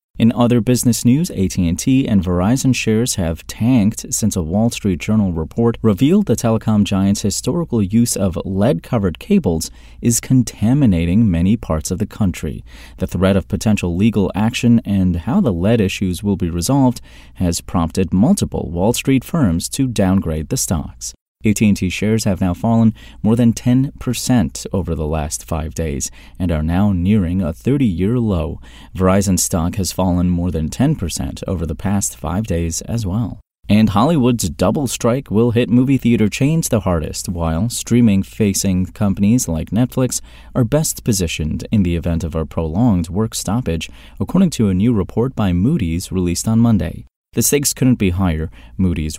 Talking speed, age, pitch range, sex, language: 160 wpm, 30-49, 90-120 Hz, male, English